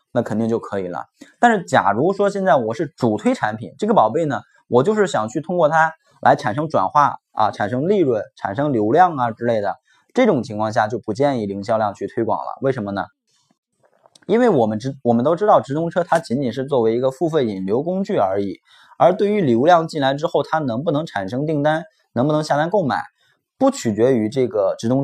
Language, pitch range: Chinese, 110-165 Hz